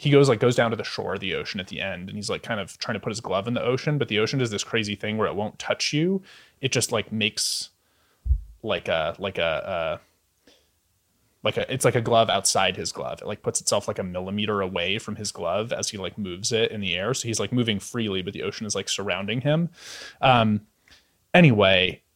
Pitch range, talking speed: 95-125 Hz, 245 wpm